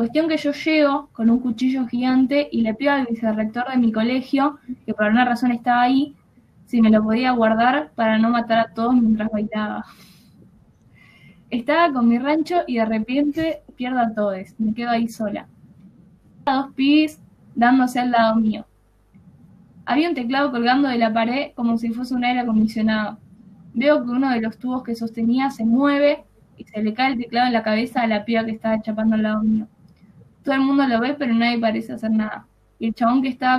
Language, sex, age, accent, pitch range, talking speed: Spanish, female, 10-29, Argentinian, 220-255 Hz, 200 wpm